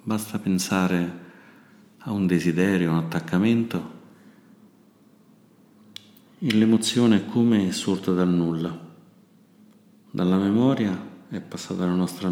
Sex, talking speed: male, 100 wpm